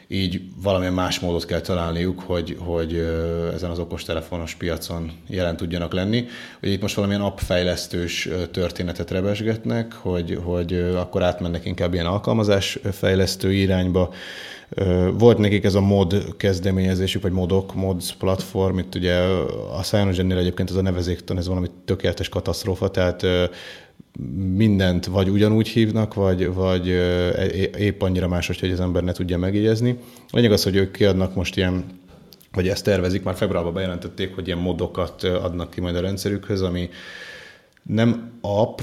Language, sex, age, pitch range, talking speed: Hungarian, male, 30-49, 90-100 Hz, 145 wpm